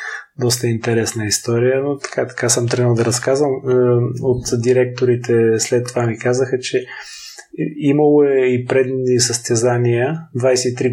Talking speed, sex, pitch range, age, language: 120 wpm, male, 115-130 Hz, 20-39, Bulgarian